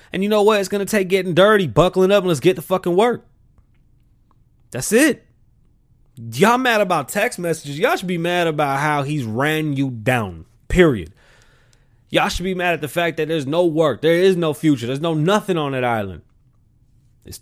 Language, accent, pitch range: English, American, 115-155 Hz